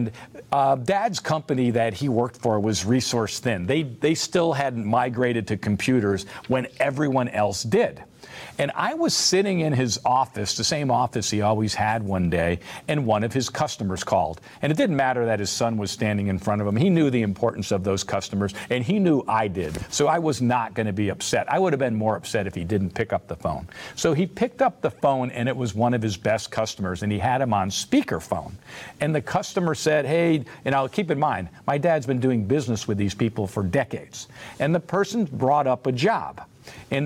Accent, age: American, 50-69